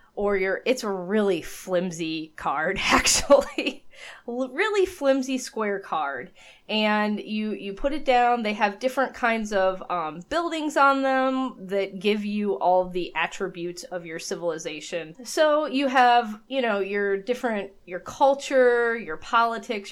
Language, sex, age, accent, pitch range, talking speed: English, female, 20-39, American, 175-225 Hz, 140 wpm